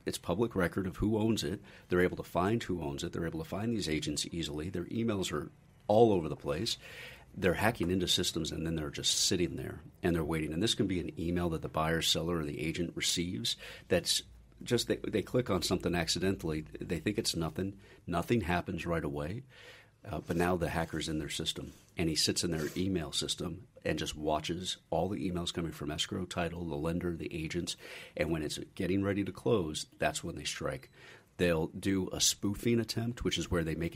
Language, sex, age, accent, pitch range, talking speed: English, male, 50-69, American, 85-100 Hz, 215 wpm